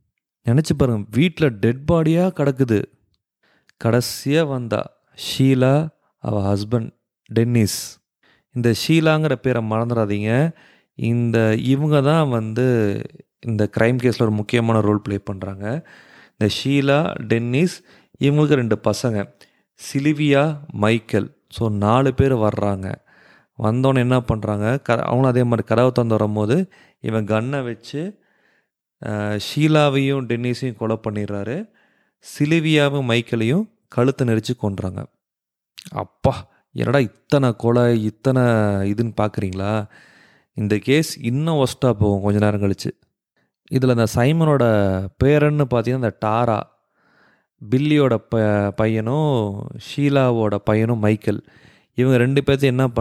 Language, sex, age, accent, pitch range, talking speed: English, male, 30-49, Indian, 110-140 Hz, 75 wpm